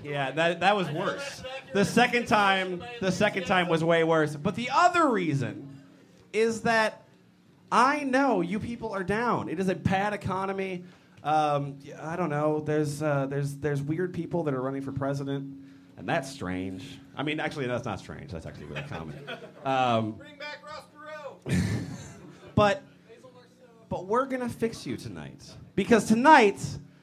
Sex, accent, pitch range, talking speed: male, American, 150-225 Hz, 160 wpm